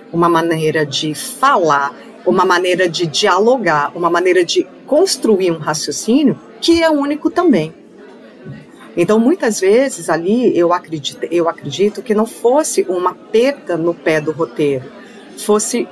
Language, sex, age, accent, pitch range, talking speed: Portuguese, female, 40-59, Brazilian, 160-225 Hz, 135 wpm